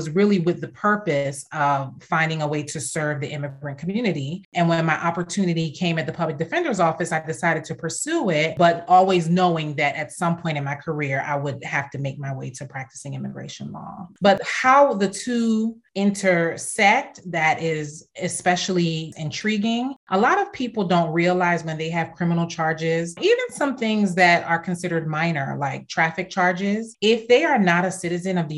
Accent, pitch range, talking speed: American, 155-190 Hz, 185 wpm